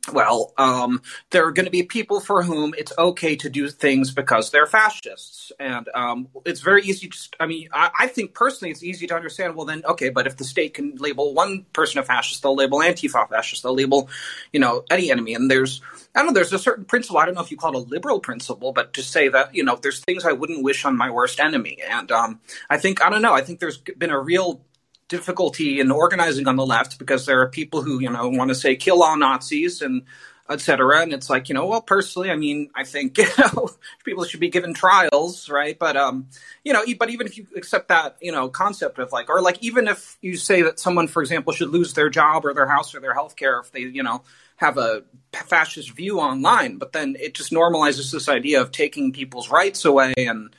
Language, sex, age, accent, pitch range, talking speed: English, male, 30-49, American, 135-185 Hz, 240 wpm